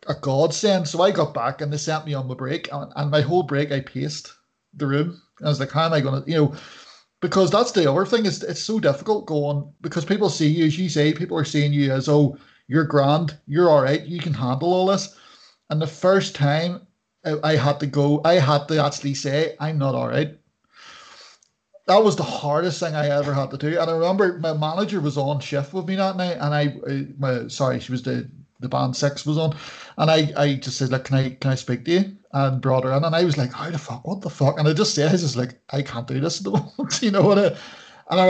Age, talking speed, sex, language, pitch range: 30-49, 250 wpm, male, English, 140-175 Hz